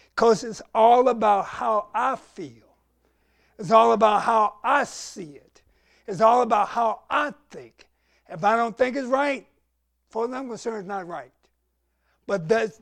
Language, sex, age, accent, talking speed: English, male, 60-79, American, 160 wpm